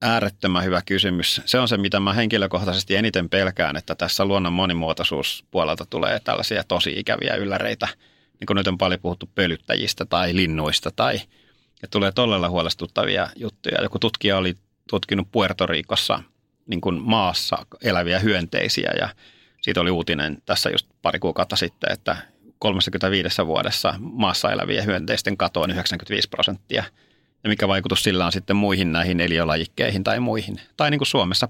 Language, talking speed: Finnish, 145 wpm